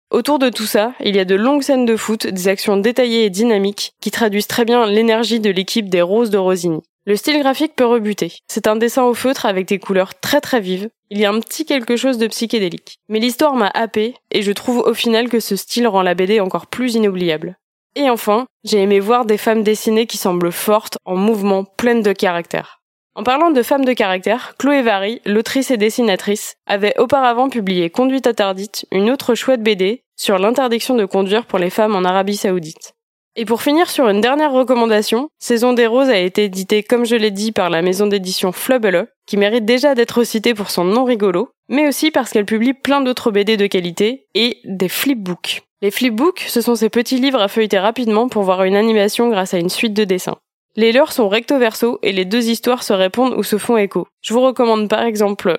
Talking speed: 215 wpm